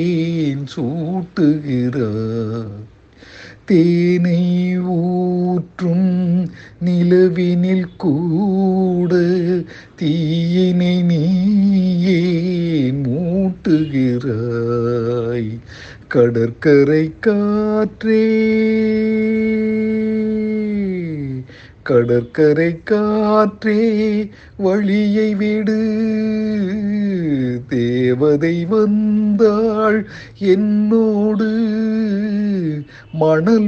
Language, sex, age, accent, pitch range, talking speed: Tamil, male, 50-69, native, 155-210 Hz, 30 wpm